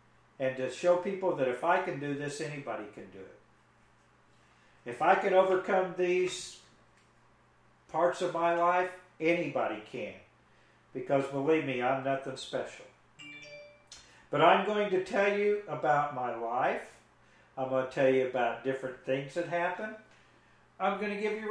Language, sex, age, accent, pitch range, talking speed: English, male, 50-69, American, 135-195 Hz, 150 wpm